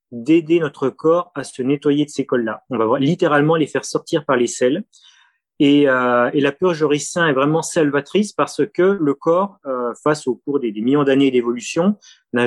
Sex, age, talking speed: male, 30-49, 200 wpm